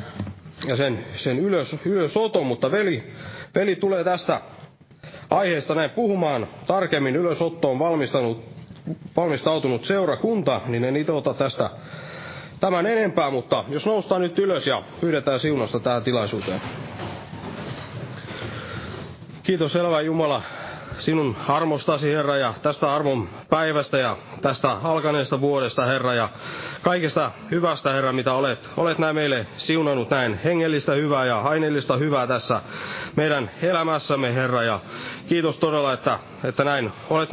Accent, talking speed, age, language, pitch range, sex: native, 120 wpm, 30-49, Finnish, 130-165 Hz, male